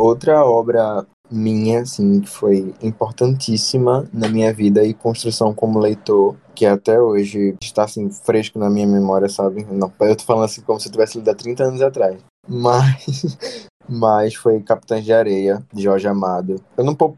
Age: 20-39